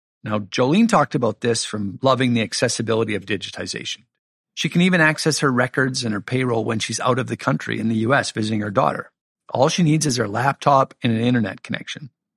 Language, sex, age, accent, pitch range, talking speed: English, male, 50-69, American, 115-150 Hz, 205 wpm